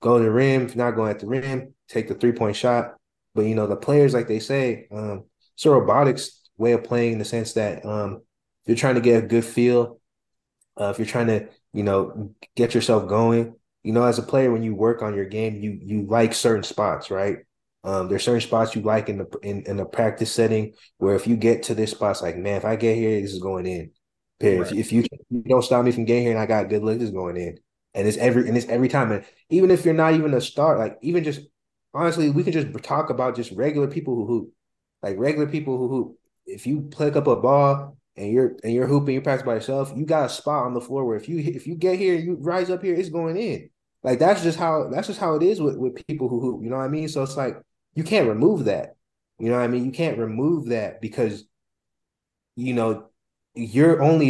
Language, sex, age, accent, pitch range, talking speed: English, male, 20-39, American, 110-140 Hz, 255 wpm